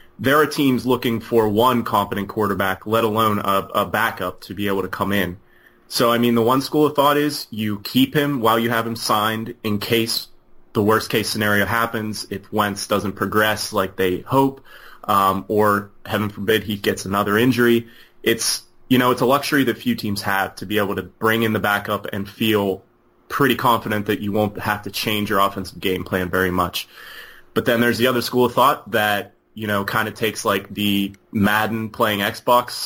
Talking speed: 205 wpm